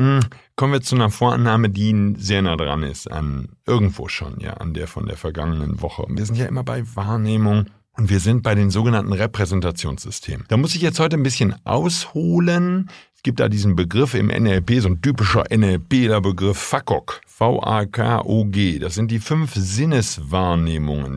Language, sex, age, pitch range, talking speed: German, male, 50-69, 95-125 Hz, 170 wpm